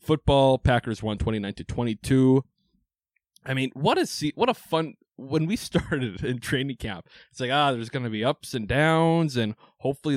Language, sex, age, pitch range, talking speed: English, male, 20-39, 110-140 Hz, 190 wpm